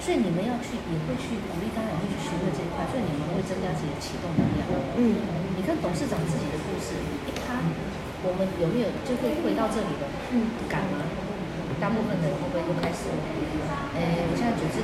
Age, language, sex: 40-59, Chinese, female